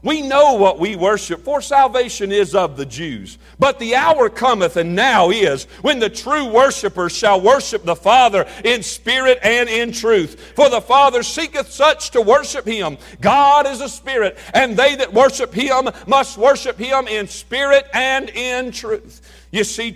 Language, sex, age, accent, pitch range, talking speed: English, male, 50-69, American, 195-250 Hz, 175 wpm